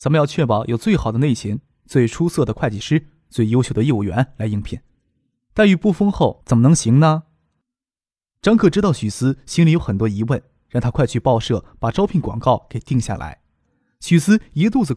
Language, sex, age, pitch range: Chinese, male, 20-39, 115-165 Hz